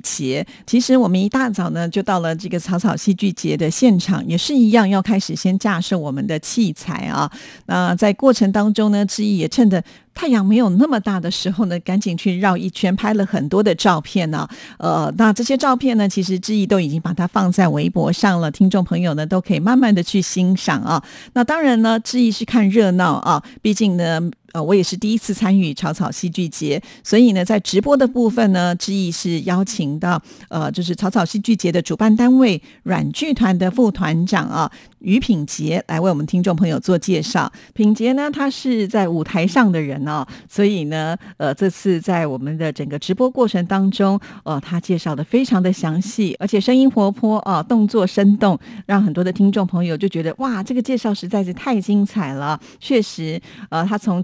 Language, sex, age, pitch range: Chinese, female, 50-69, 175-215 Hz